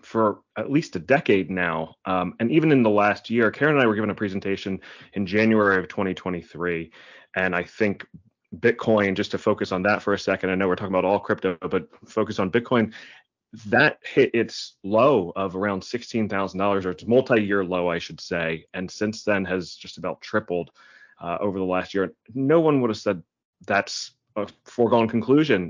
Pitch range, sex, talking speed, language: 95-115 Hz, male, 190 wpm, English